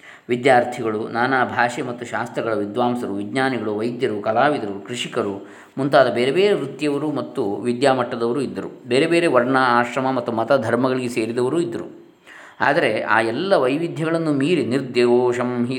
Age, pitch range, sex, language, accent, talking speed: 20-39, 120-140 Hz, male, Kannada, native, 120 wpm